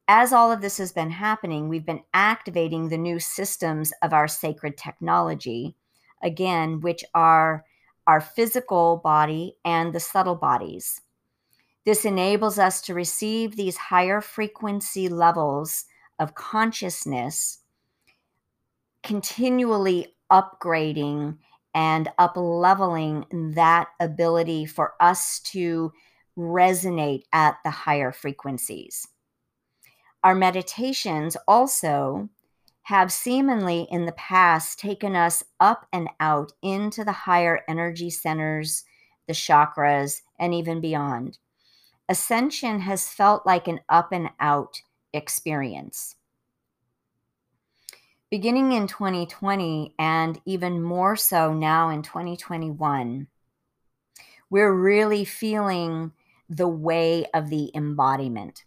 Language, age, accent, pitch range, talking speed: English, 50-69, American, 155-190 Hz, 105 wpm